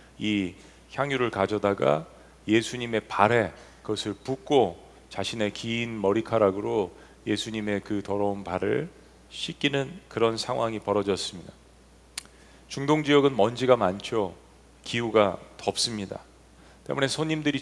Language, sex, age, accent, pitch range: Korean, male, 40-59, native, 100-135 Hz